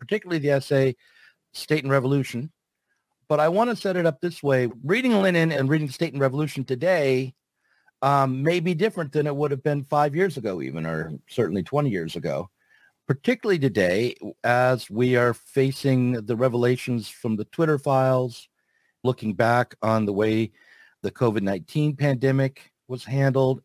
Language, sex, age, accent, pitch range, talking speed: English, male, 50-69, American, 120-150 Hz, 160 wpm